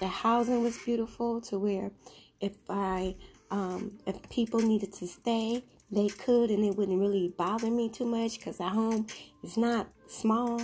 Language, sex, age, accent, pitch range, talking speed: English, female, 20-39, American, 185-225 Hz, 170 wpm